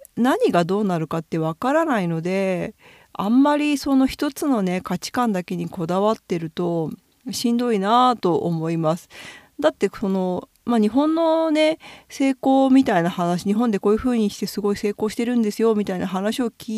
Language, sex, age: Japanese, female, 40-59